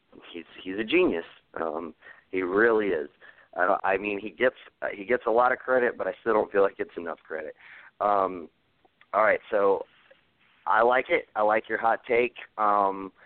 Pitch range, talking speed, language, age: 95-130 Hz, 200 wpm, English, 30-49